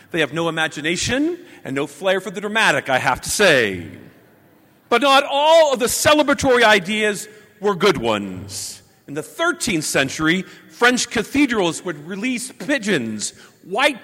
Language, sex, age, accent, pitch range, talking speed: English, male, 40-59, American, 175-255 Hz, 145 wpm